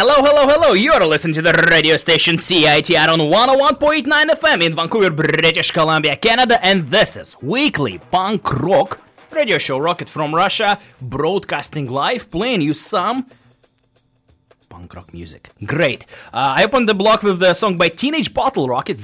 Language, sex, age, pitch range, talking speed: English, male, 20-39, 115-180 Hz, 160 wpm